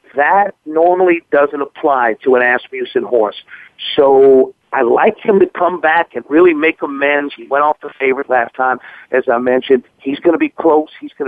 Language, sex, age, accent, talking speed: English, male, 50-69, American, 190 wpm